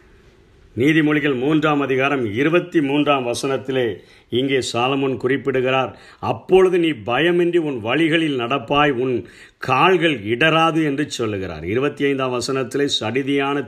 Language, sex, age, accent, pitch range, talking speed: Tamil, male, 50-69, native, 125-155 Hz, 95 wpm